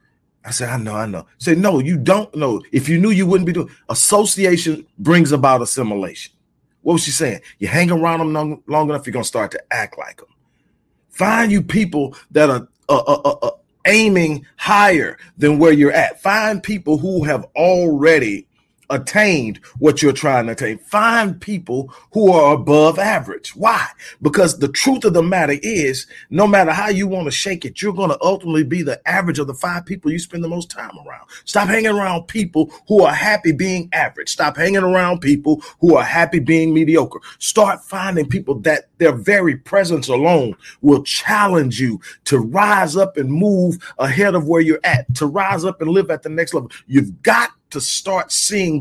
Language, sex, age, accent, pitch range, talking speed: English, male, 40-59, American, 145-190 Hz, 195 wpm